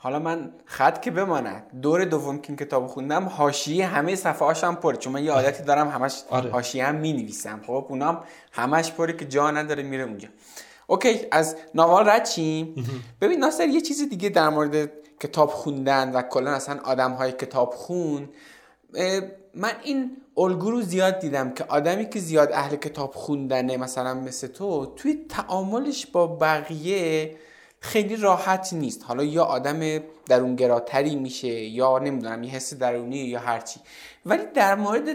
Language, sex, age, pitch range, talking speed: Persian, male, 20-39, 135-175 Hz, 160 wpm